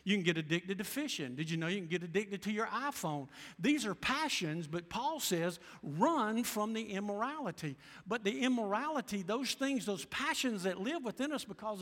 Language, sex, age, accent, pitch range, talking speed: English, male, 50-69, American, 185-245 Hz, 195 wpm